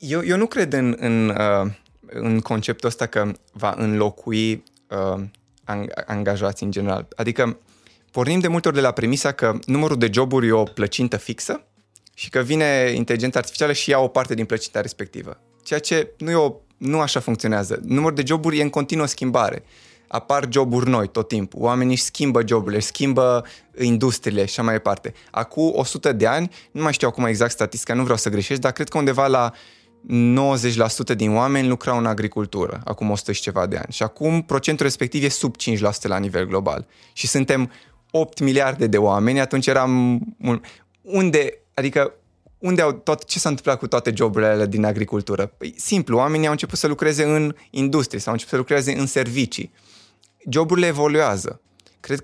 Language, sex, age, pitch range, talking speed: Romanian, male, 20-39, 110-140 Hz, 180 wpm